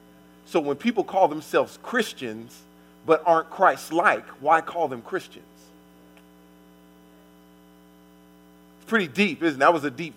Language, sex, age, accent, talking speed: English, male, 40-59, American, 130 wpm